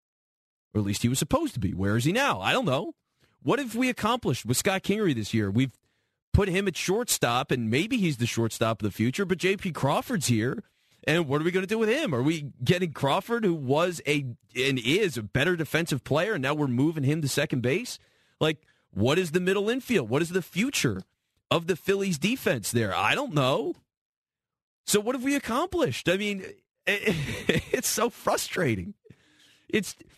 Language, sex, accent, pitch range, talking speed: English, male, American, 135-200 Hz, 200 wpm